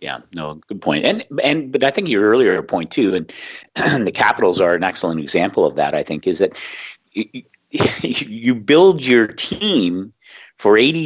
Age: 50-69